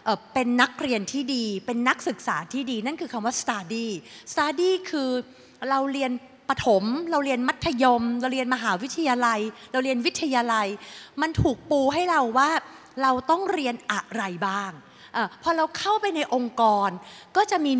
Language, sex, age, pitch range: Thai, female, 30-49, 225-300 Hz